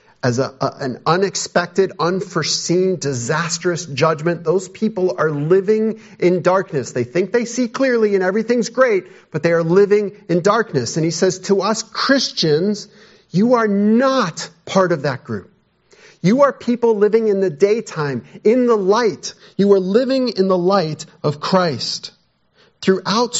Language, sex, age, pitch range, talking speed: English, male, 40-59, 155-205 Hz, 150 wpm